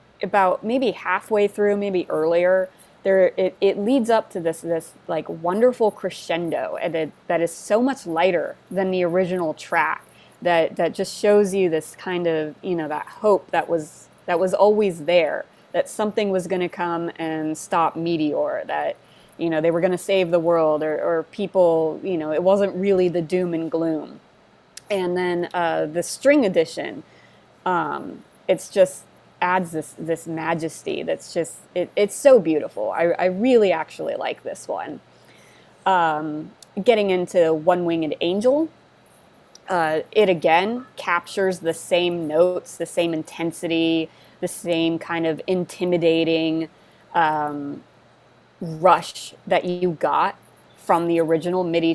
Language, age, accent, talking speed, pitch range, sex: English, 20-39, American, 155 wpm, 165-190 Hz, female